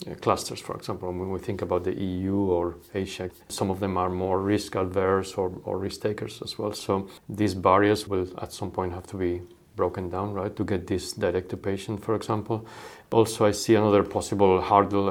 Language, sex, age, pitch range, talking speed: English, male, 40-59, 95-105 Hz, 205 wpm